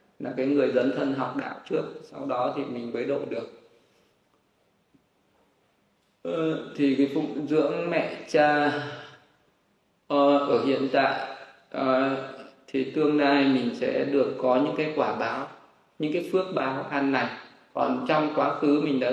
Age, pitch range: 20-39, 130-145 Hz